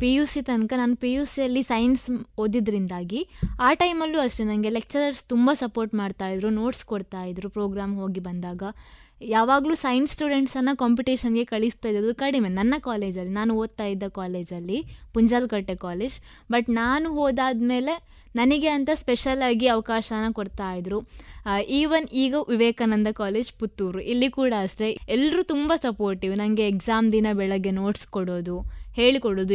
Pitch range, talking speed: 205-260 Hz, 130 wpm